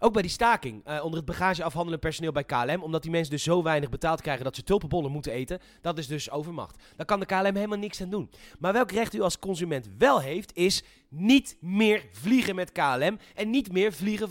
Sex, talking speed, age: male, 230 wpm, 30-49